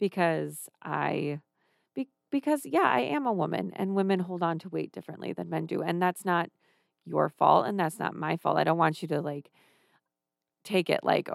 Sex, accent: female, American